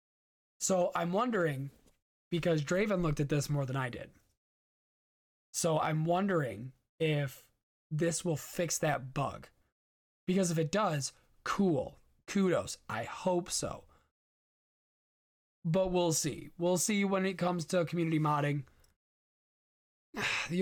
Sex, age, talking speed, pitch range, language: male, 20-39, 120 wpm, 145-180 Hz, English